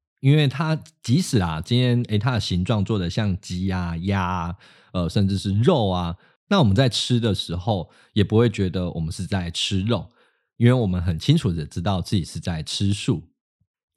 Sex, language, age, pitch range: male, Chinese, 20-39, 90-115 Hz